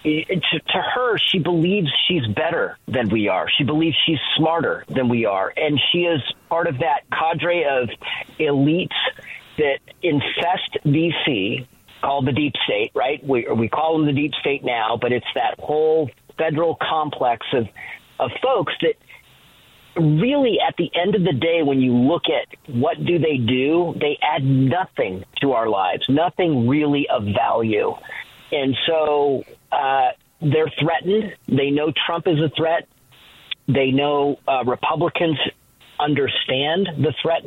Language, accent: English, American